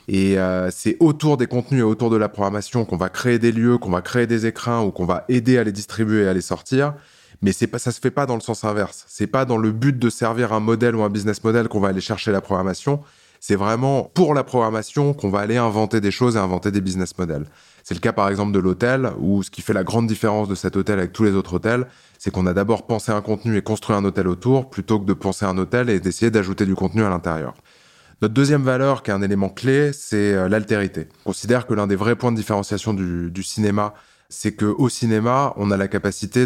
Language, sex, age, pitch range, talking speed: French, male, 20-39, 100-120 Hz, 255 wpm